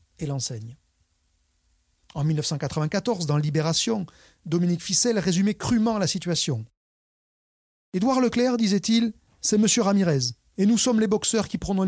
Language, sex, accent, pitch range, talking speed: French, male, French, 130-185 Hz, 130 wpm